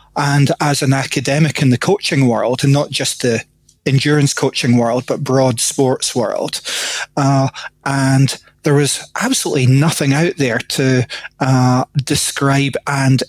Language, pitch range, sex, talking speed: English, 130-145 Hz, male, 140 wpm